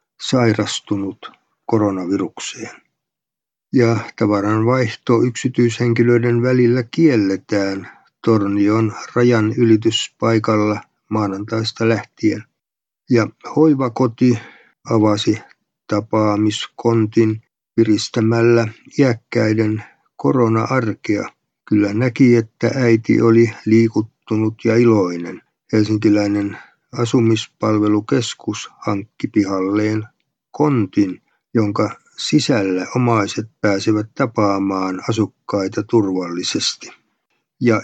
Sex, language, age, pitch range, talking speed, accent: male, Finnish, 50-69, 105-120 Hz, 60 wpm, native